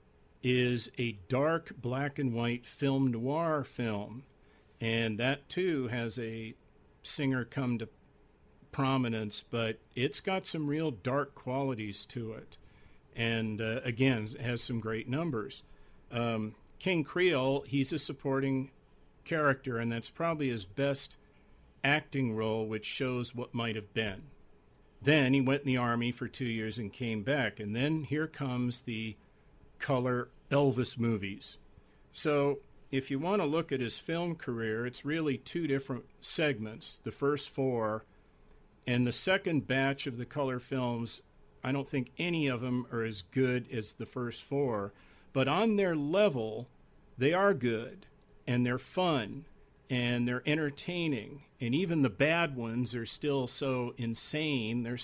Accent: American